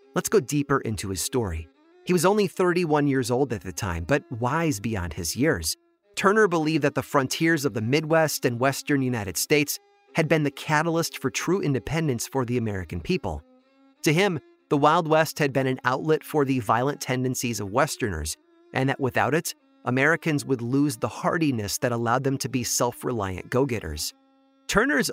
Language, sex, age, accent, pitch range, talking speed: English, male, 30-49, American, 125-165 Hz, 180 wpm